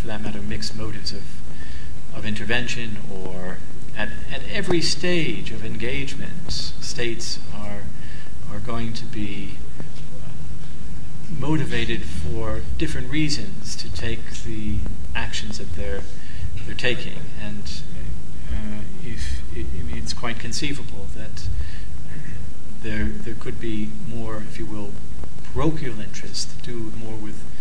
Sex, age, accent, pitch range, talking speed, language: male, 40-59, American, 80-115 Hz, 120 wpm, English